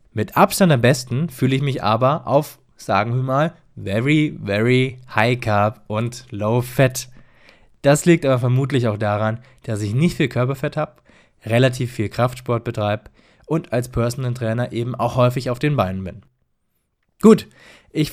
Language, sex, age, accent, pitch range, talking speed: English, male, 20-39, German, 110-145 Hz, 160 wpm